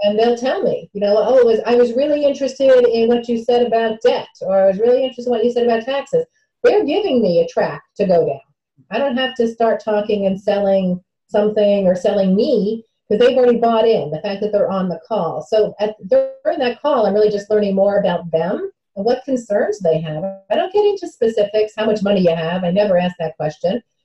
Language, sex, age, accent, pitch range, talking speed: English, female, 40-59, American, 185-245 Hz, 225 wpm